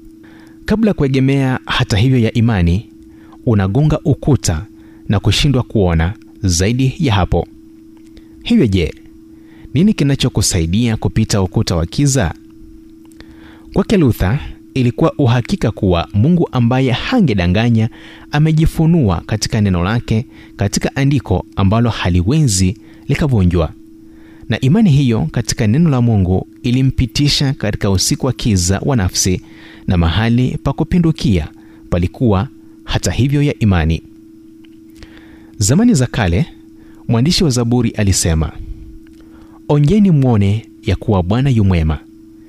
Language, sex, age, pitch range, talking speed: Swahili, male, 30-49, 100-135 Hz, 105 wpm